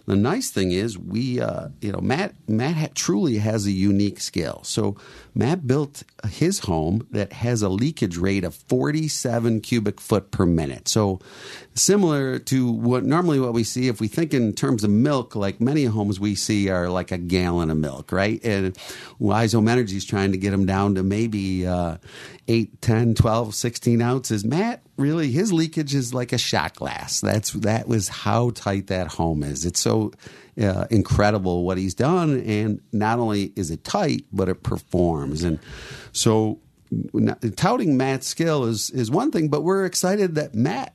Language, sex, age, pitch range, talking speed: English, male, 50-69, 100-140 Hz, 180 wpm